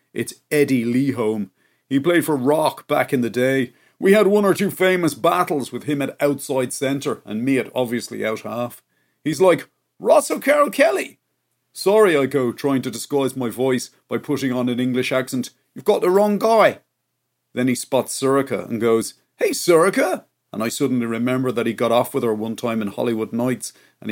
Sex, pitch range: male, 120-165 Hz